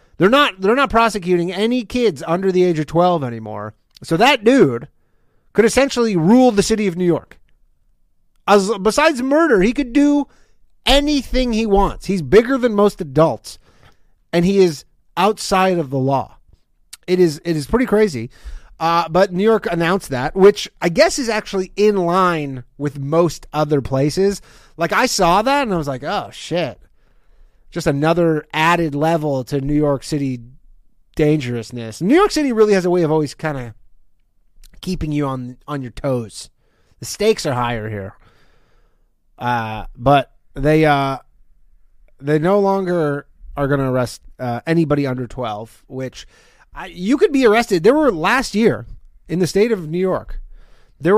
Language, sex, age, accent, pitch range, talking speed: English, male, 30-49, American, 135-205 Hz, 165 wpm